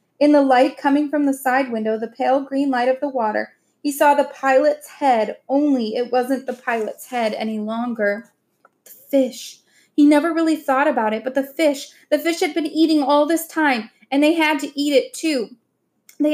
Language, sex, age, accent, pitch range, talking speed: English, female, 10-29, American, 245-295 Hz, 200 wpm